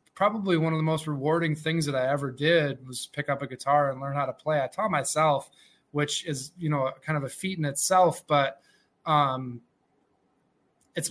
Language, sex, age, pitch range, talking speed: English, male, 20-39, 145-170 Hz, 200 wpm